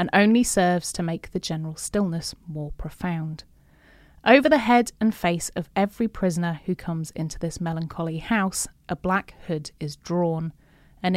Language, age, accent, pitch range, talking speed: English, 30-49, British, 165-200 Hz, 160 wpm